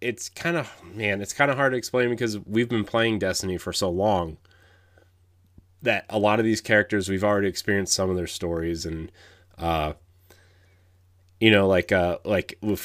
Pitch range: 90-105 Hz